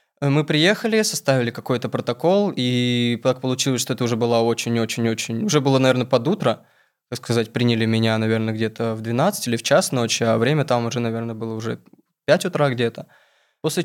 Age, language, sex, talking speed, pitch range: 20-39, Russian, male, 180 wpm, 120-145 Hz